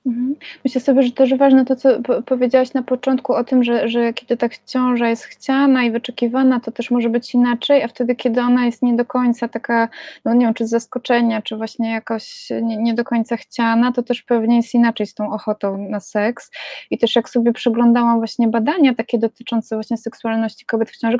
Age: 20-39